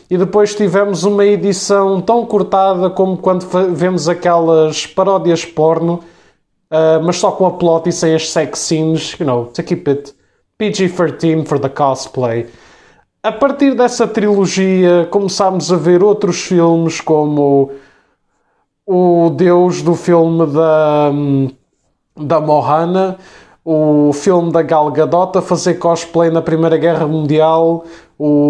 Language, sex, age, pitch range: Portuguese, male, 20-39, 155-185 Hz